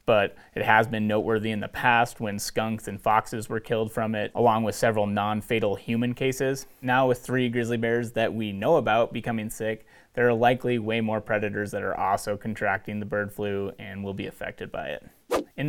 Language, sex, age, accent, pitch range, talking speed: English, male, 30-49, American, 110-120 Hz, 205 wpm